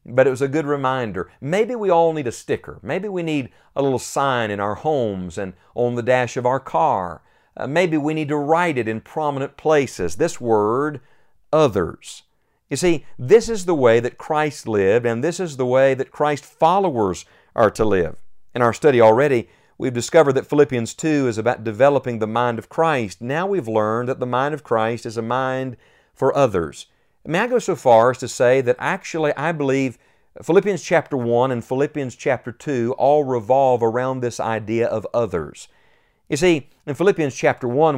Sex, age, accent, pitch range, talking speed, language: male, 50-69, American, 120-150 Hz, 195 wpm, English